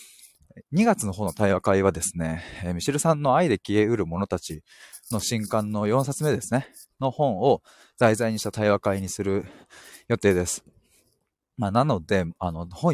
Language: Japanese